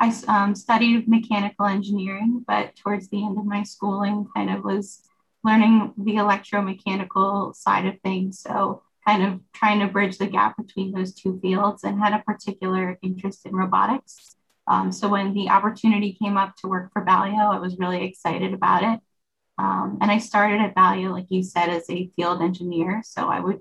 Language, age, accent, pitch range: English, 10-29, American, 185-210 Hz